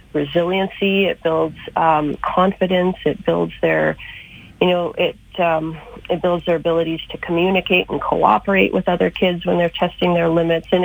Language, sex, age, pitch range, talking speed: English, female, 30-49, 160-185 Hz, 160 wpm